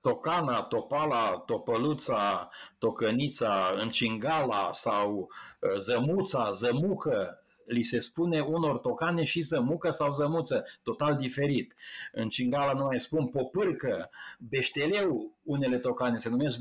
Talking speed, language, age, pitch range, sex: 105 wpm, Romanian, 50-69, 120-160 Hz, male